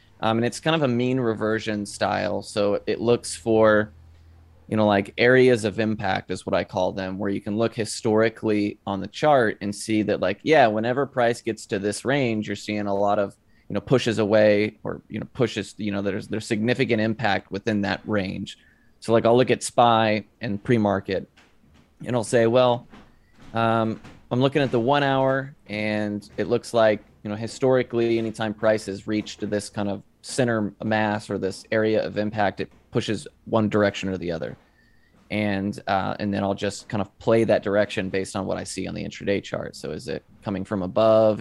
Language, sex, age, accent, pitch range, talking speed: English, male, 20-39, American, 100-115 Hz, 200 wpm